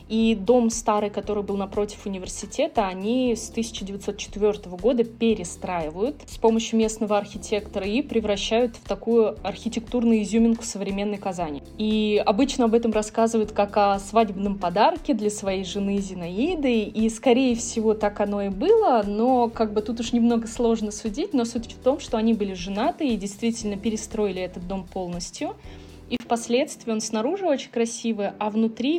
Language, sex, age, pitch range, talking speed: Russian, female, 20-39, 210-240 Hz, 155 wpm